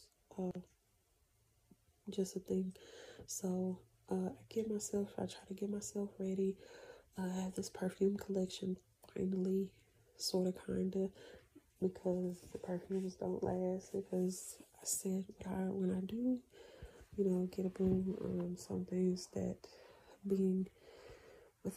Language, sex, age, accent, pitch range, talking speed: English, female, 30-49, American, 185-205 Hz, 130 wpm